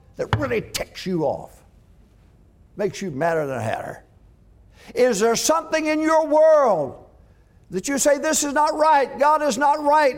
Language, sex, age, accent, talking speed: English, male, 60-79, American, 165 wpm